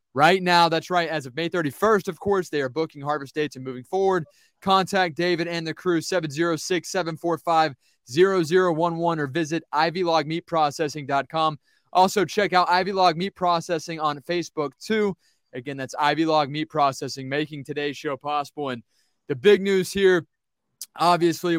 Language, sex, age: English, male, 20-39